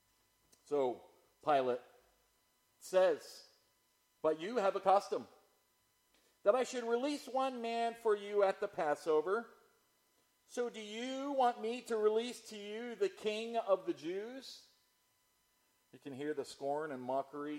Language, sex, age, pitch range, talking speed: English, male, 40-59, 145-245 Hz, 135 wpm